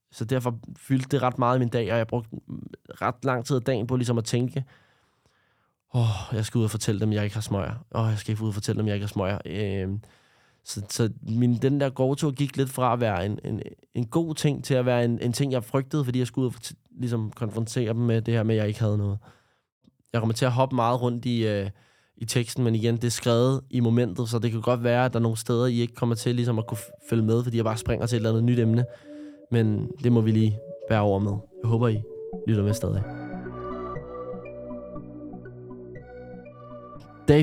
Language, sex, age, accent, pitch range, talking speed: Danish, male, 20-39, native, 110-135 Hz, 240 wpm